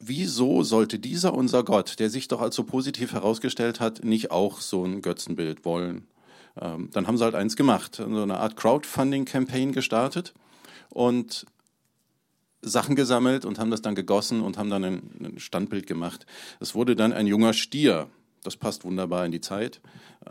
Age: 40-59